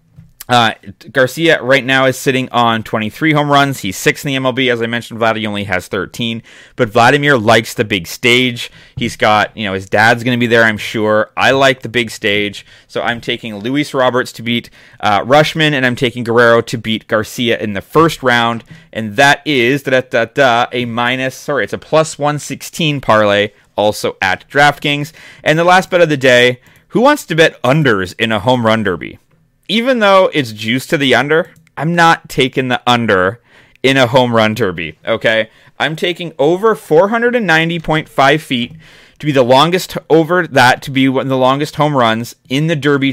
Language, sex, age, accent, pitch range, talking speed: English, male, 30-49, American, 120-150 Hz, 195 wpm